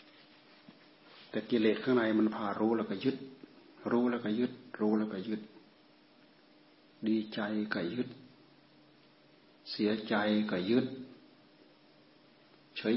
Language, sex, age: Thai, male, 60-79